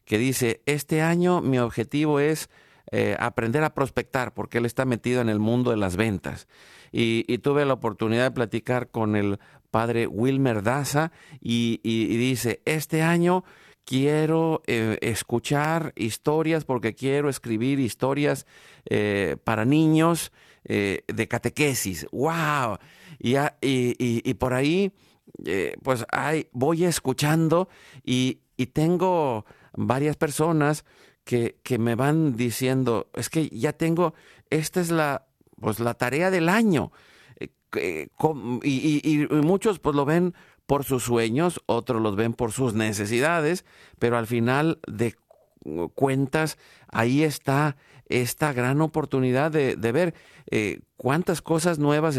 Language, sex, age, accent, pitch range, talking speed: Spanish, male, 50-69, Mexican, 120-155 Hz, 140 wpm